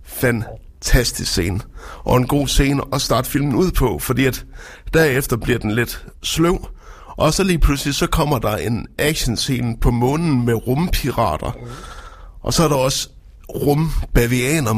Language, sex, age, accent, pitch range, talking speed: Danish, male, 60-79, native, 120-150 Hz, 155 wpm